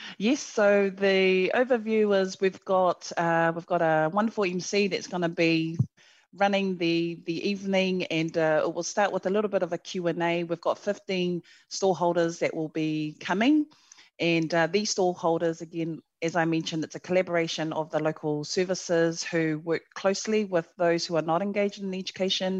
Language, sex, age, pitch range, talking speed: English, female, 30-49, 160-190 Hz, 185 wpm